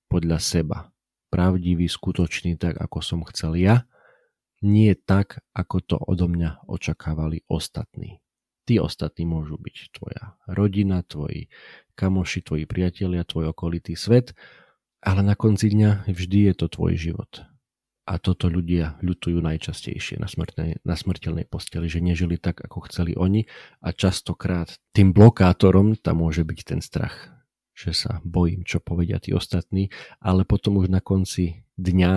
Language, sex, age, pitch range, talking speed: Slovak, male, 40-59, 85-100 Hz, 140 wpm